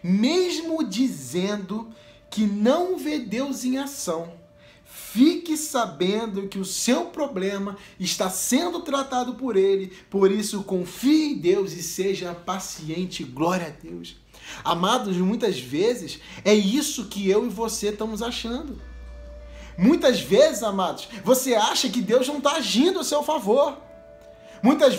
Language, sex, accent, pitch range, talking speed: Portuguese, male, Brazilian, 215-325 Hz, 130 wpm